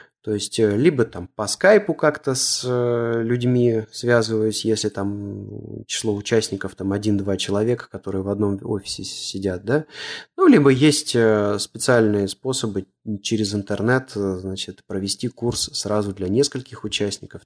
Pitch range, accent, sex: 100-130 Hz, native, male